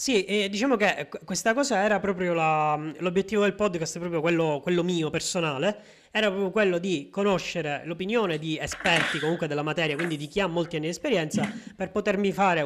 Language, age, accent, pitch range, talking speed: Italian, 20-39, native, 150-190 Hz, 190 wpm